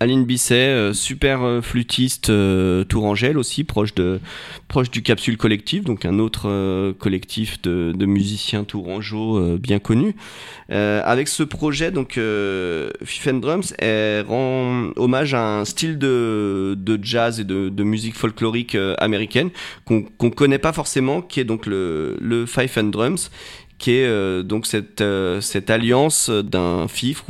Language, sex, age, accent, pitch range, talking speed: French, male, 30-49, French, 100-125 Hz, 150 wpm